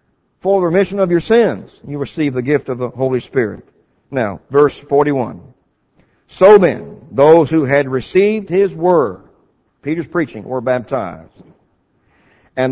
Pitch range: 130-175 Hz